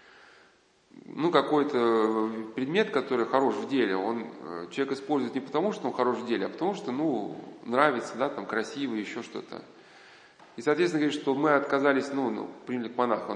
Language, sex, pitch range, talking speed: Russian, male, 120-150 Hz, 170 wpm